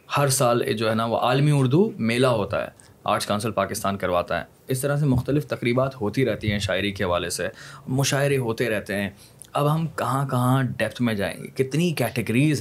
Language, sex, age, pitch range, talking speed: Urdu, male, 20-39, 105-135 Hz, 200 wpm